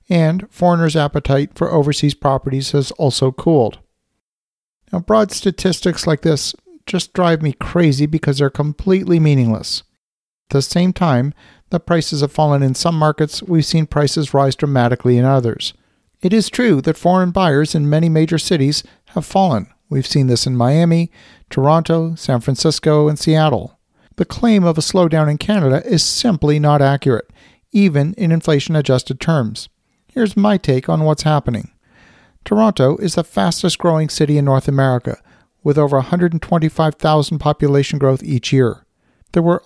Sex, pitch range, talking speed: male, 135-170 Hz, 155 wpm